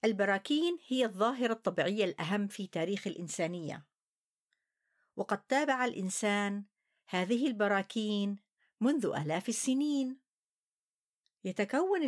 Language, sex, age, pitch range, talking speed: Arabic, female, 50-69, 195-260 Hz, 85 wpm